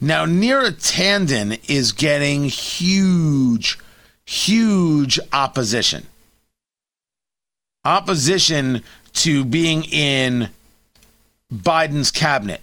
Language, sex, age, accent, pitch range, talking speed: English, male, 40-59, American, 140-185 Hz, 65 wpm